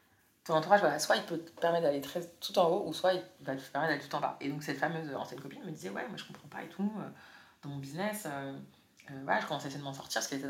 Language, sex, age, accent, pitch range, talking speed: French, female, 30-49, French, 140-185 Hz, 310 wpm